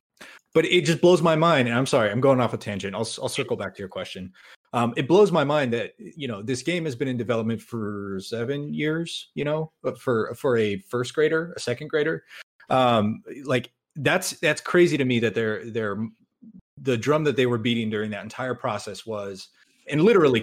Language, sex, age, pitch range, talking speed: English, male, 30-49, 105-140 Hz, 210 wpm